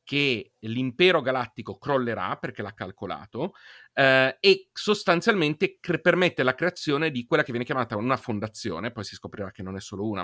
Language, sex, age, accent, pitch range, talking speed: Italian, male, 30-49, native, 105-140 Hz, 165 wpm